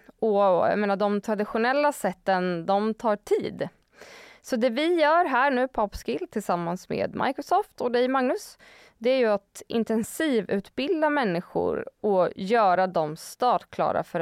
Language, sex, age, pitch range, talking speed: Swedish, female, 20-39, 195-270 Hz, 150 wpm